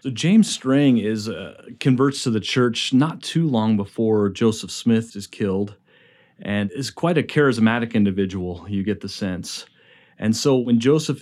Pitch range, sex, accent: 100-115 Hz, male, American